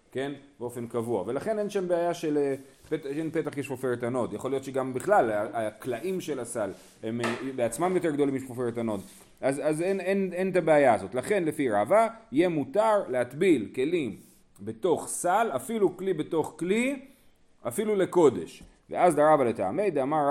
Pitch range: 130-190 Hz